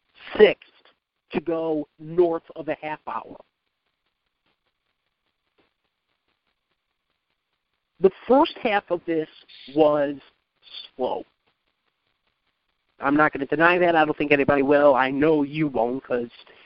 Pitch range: 150-195 Hz